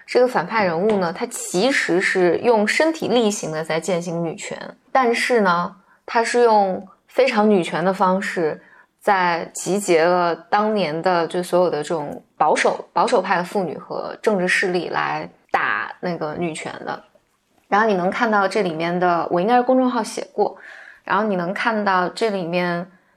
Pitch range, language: 175-230 Hz, Chinese